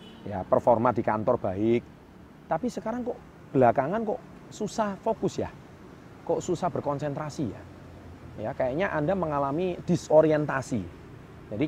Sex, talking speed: male, 120 wpm